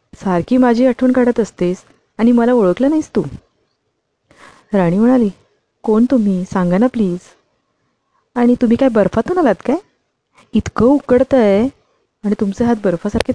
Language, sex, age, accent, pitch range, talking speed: Marathi, female, 30-49, native, 175-245 Hz, 85 wpm